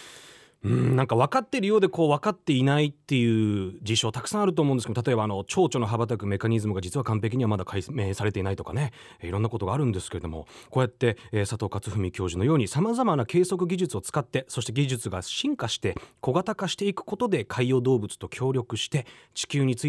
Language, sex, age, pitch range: Japanese, male, 30-49, 110-165 Hz